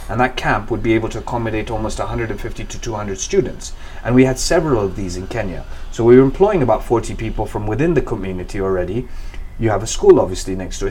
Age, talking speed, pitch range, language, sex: 30-49, 220 wpm, 105-130 Hz, English, male